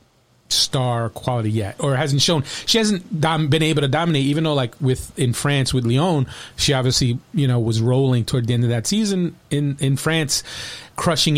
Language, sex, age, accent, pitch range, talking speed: English, male, 30-49, American, 120-150 Hz, 195 wpm